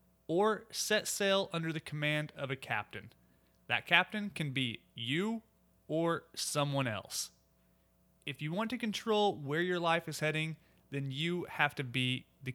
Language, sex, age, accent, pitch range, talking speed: English, male, 30-49, American, 125-180 Hz, 160 wpm